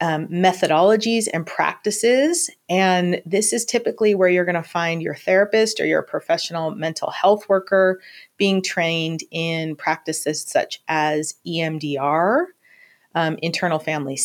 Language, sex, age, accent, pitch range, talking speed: English, female, 30-49, American, 165-210 Hz, 130 wpm